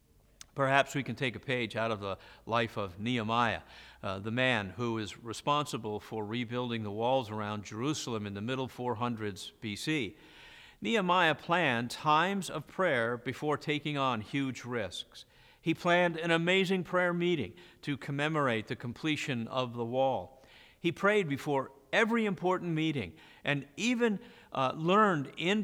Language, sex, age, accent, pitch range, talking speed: English, male, 50-69, American, 120-165 Hz, 145 wpm